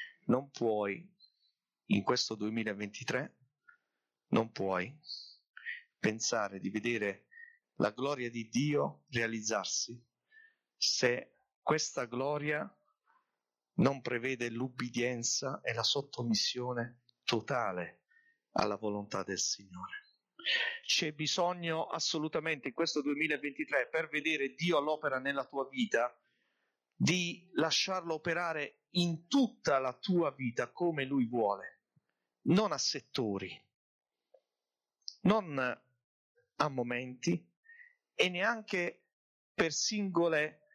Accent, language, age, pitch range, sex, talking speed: native, Italian, 40-59, 120-170 Hz, male, 95 wpm